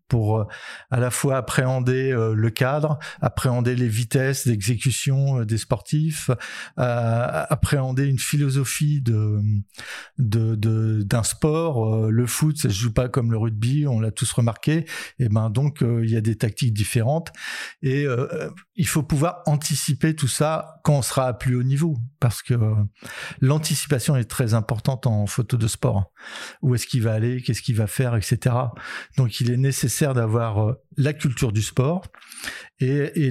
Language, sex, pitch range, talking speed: French, male, 115-140 Hz, 160 wpm